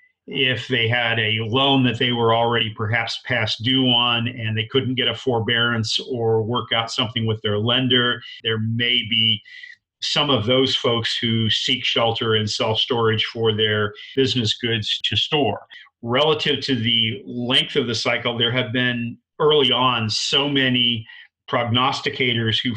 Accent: American